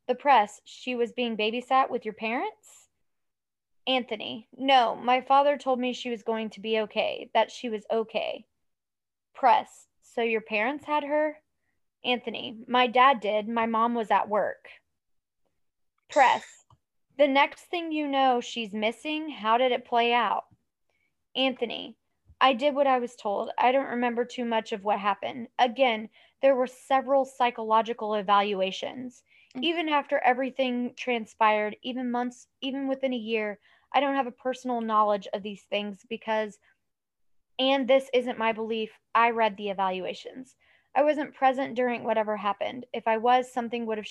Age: 20-39